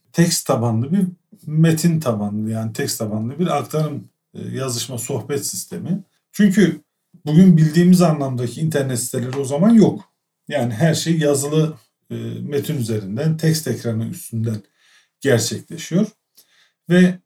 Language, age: Turkish, 50-69